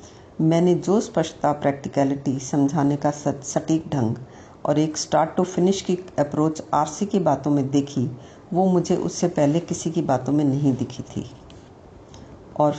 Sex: female